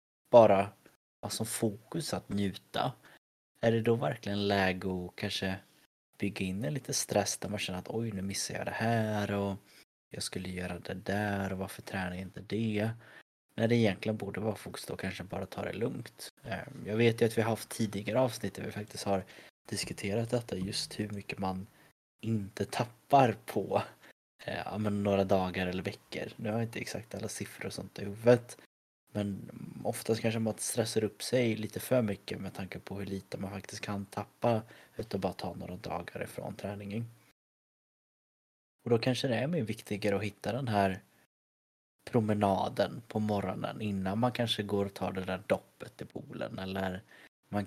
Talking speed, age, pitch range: 180 wpm, 20-39, 95-110 Hz